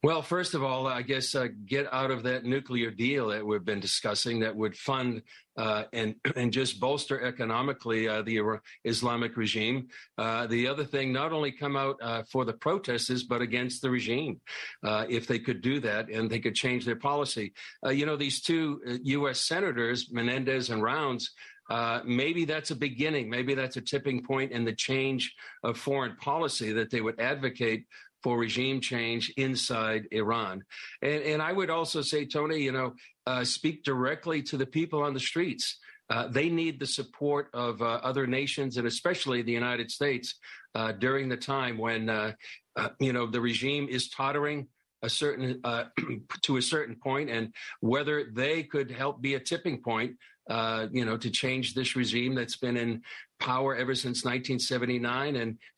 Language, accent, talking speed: English, American, 180 wpm